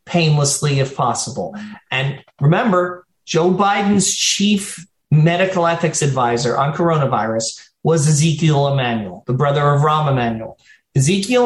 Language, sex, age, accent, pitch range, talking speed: English, male, 40-59, American, 145-205 Hz, 115 wpm